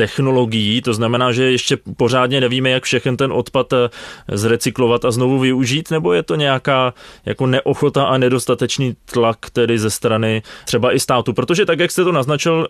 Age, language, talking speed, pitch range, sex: 20-39, Czech, 165 wpm, 115-135 Hz, male